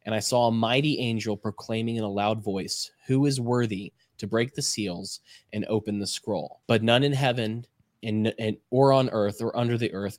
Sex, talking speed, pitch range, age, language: male, 195 wpm, 105-130 Hz, 20-39, English